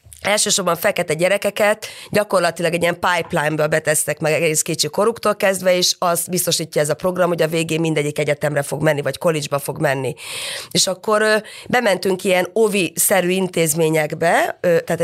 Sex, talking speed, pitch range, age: female, 165 wpm, 160-200 Hz, 30-49